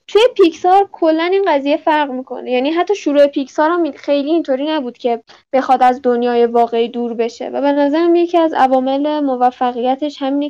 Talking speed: 165 wpm